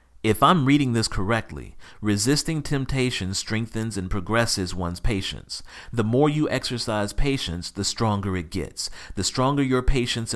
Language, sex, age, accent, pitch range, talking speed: English, male, 40-59, American, 85-115 Hz, 145 wpm